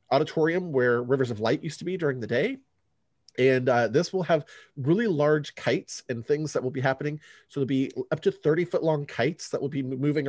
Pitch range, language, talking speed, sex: 115-145 Hz, English, 225 wpm, male